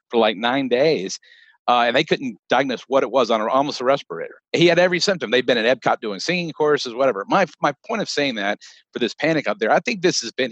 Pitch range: 115-145 Hz